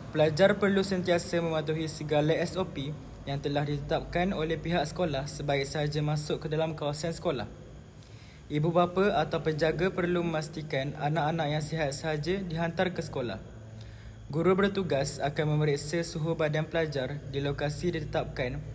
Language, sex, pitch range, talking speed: Malay, male, 145-170 Hz, 135 wpm